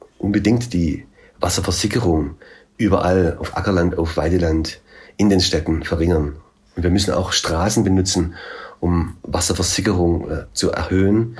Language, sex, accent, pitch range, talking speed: German, male, German, 85-100 Hz, 115 wpm